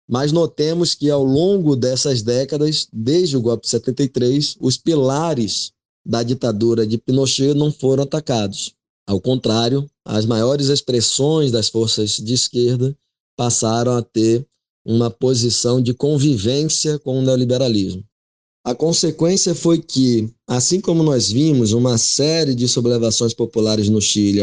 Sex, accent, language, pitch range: male, Brazilian, Portuguese, 110-140 Hz